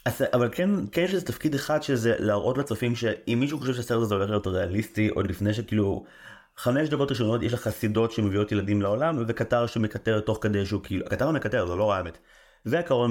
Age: 30-49